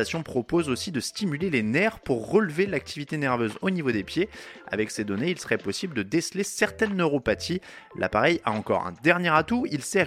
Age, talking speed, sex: 20-39, 190 wpm, male